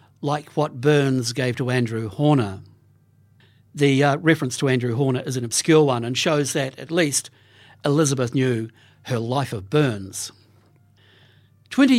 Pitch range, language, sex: 120-170 Hz, English, male